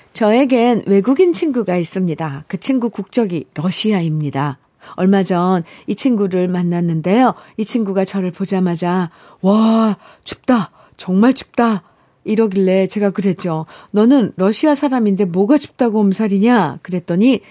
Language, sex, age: Korean, female, 40-59